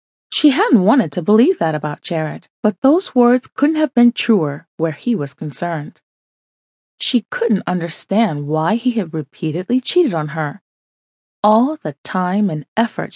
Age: 20-39